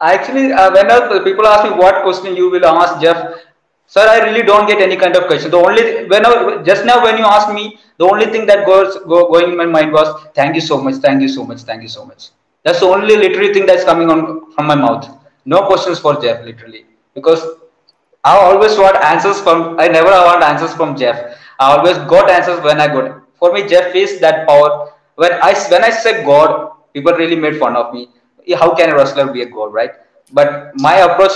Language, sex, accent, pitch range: English, male, Indian, 145-190 Hz